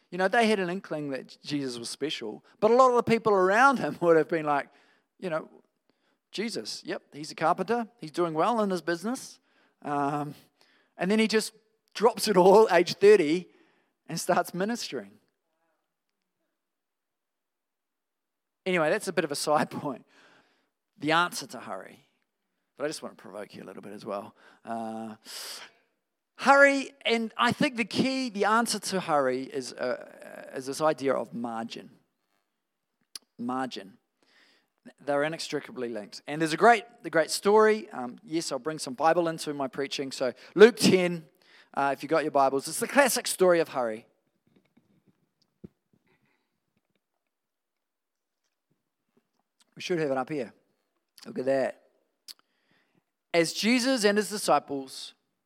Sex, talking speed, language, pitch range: male, 150 wpm, English, 145-220 Hz